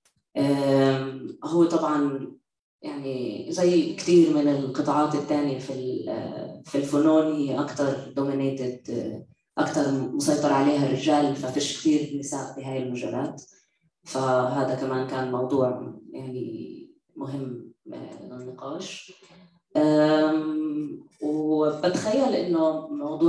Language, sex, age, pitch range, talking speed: English, female, 20-39, 130-150 Hz, 45 wpm